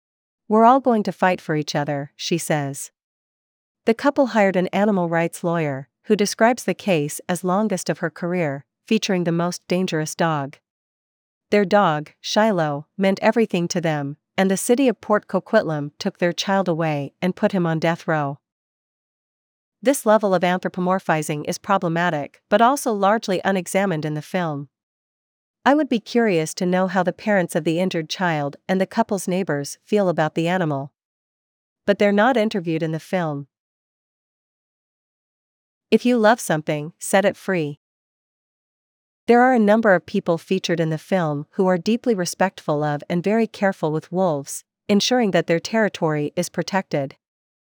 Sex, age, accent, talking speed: female, 40-59, American, 160 wpm